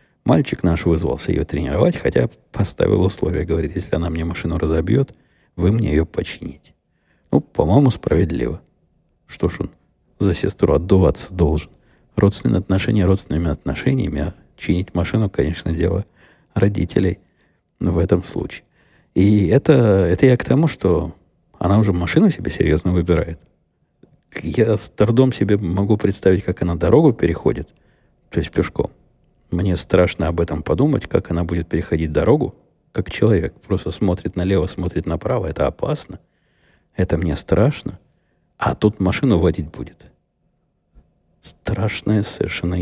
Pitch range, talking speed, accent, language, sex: 85-105 Hz, 135 wpm, native, Russian, male